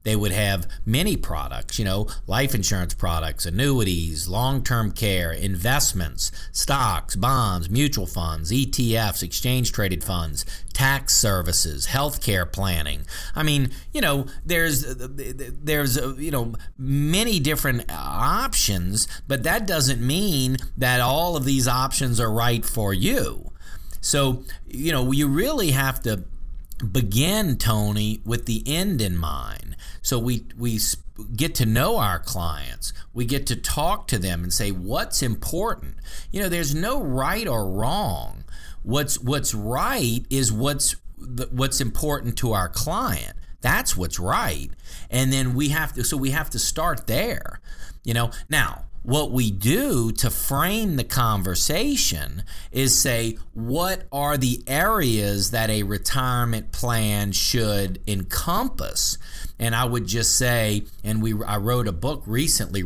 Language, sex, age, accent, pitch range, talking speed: English, male, 40-59, American, 95-135 Hz, 140 wpm